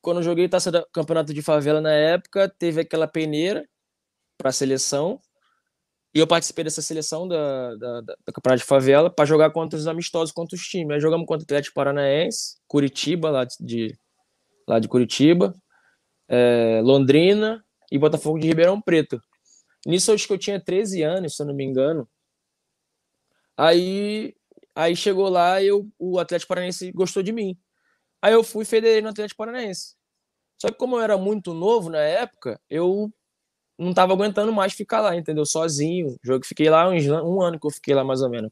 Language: Portuguese